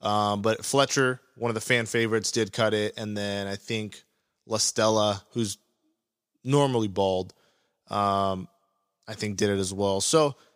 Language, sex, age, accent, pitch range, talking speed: English, male, 20-39, American, 105-125 Hz, 155 wpm